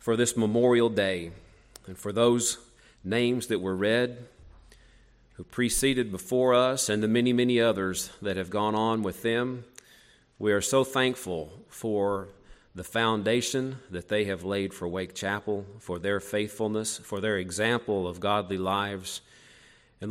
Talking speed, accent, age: 150 wpm, American, 40-59